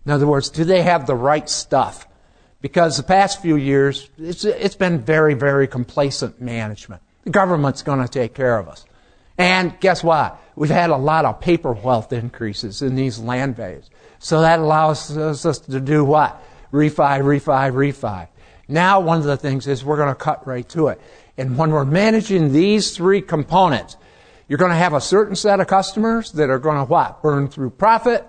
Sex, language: male, English